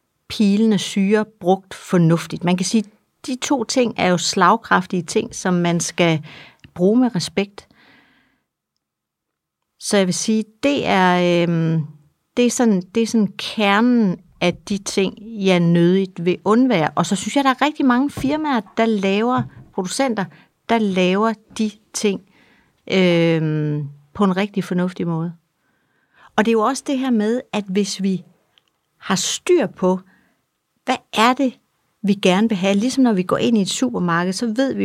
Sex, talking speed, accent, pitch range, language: female, 170 wpm, native, 175-225 Hz, Danish